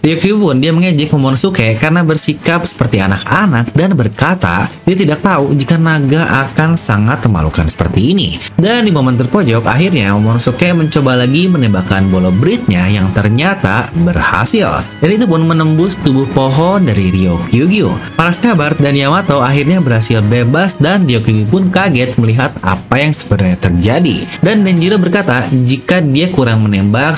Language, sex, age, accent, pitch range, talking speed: English, male, 30-49, Indonesian, 110-170 Hz, 150 wpm